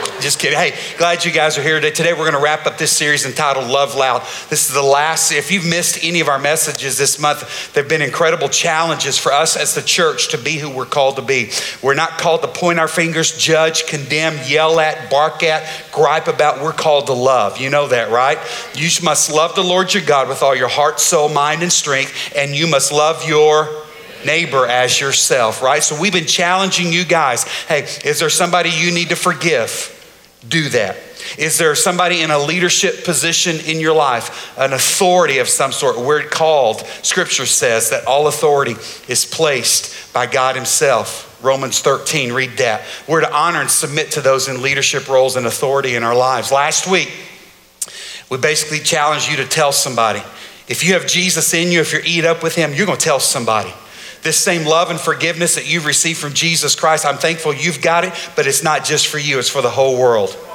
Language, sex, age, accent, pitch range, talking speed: English, male, 50-69, American, 140-170 Hz, 210 wpm